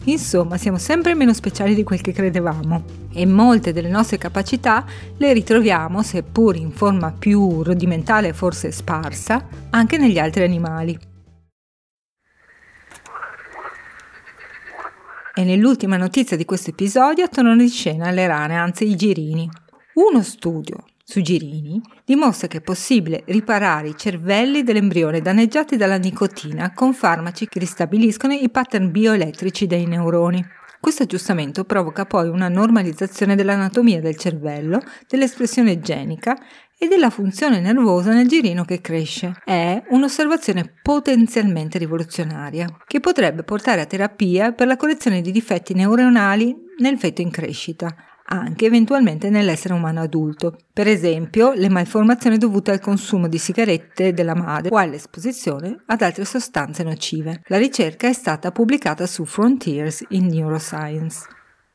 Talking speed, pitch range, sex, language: 130 wpm, 170-230 Hz, female, Italian